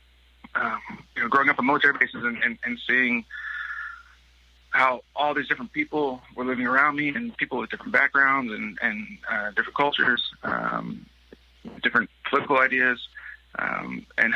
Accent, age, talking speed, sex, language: American, 30-49, 155 wpm, male, English